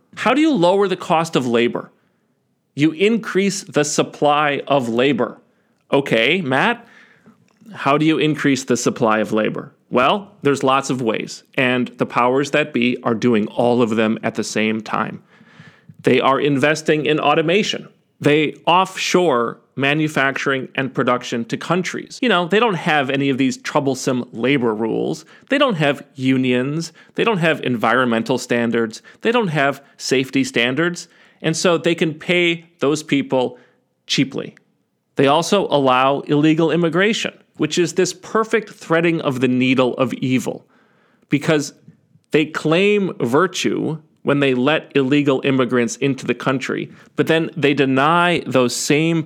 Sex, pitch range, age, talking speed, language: male, 130-170 Hz, 40-59, 145 wpm, English